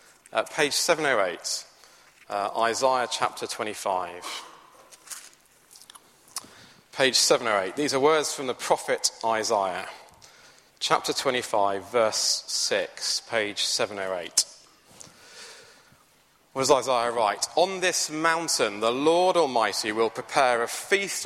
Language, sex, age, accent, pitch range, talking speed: English, male, 30-49, British, 110-160 Hz, 100 wpm